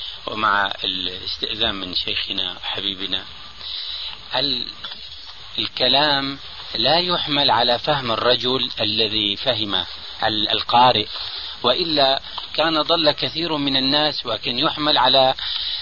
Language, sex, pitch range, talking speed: Arabic, male, 125-175 Hz, 85 wpm